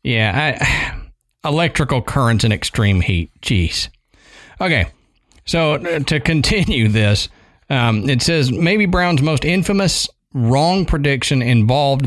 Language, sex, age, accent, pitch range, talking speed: English, male, 40-59, American, 115-160 Hz, 115 wpm